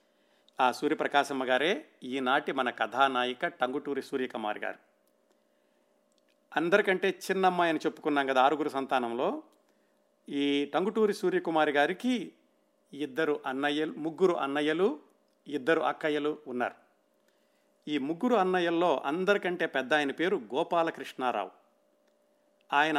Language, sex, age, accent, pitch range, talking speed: Telugu, male, 50-69, native, 135-175 Hz, 90 wpm